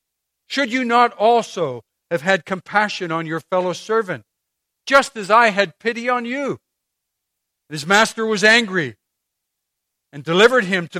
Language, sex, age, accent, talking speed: English, male, 60-79, American, 140 wpm